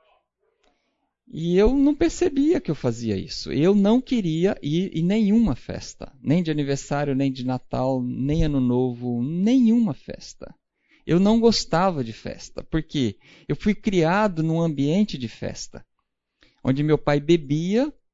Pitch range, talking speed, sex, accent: 130-185 Hz, 140 wpm, male, Brazilian